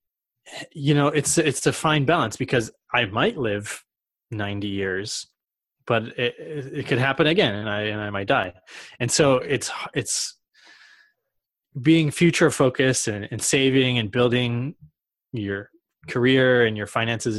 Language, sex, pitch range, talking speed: English, male, 110-140 Hz, 145 wpm